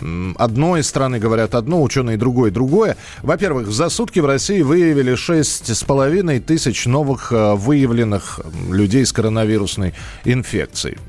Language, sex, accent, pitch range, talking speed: Russian, male, native, 110-145 Hz, 120 wpm